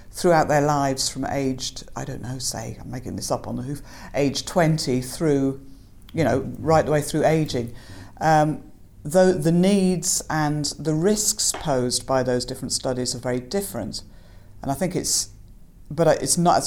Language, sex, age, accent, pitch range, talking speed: English, female, 50-69, British, 125-170 Hz, 175 wpm